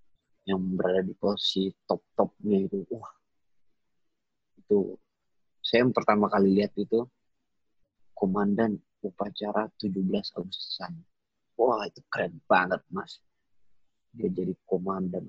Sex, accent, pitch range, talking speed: male, native, 95-120 Hz, 100 wpm